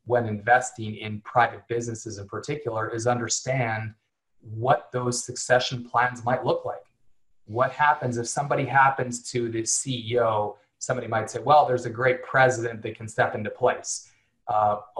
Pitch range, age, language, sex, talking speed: 115-135 Hz, 30-49, English, male, 150 wpm